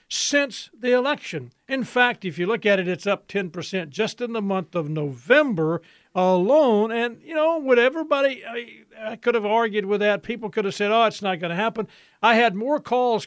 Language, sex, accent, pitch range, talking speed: English, male, American, 185-235 Hz, 210 wpm